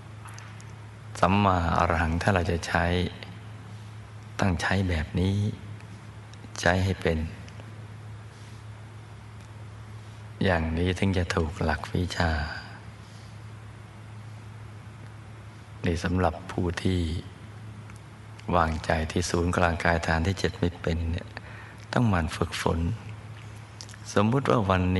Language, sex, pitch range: Thai, male, 90-110 Hz